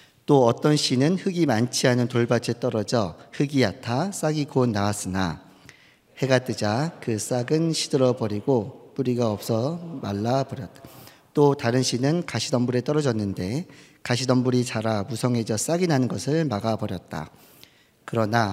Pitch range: 115-140 Hz